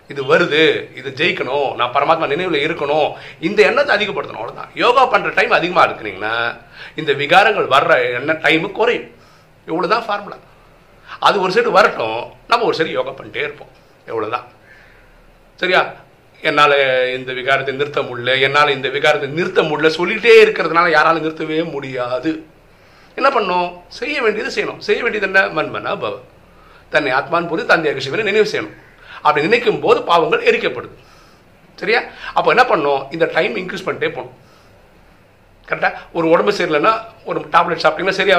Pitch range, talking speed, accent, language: 140-205 Hz, 125 wpm, native, Tamil